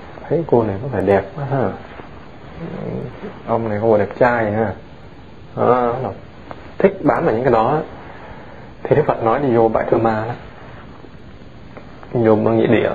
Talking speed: 160 wpm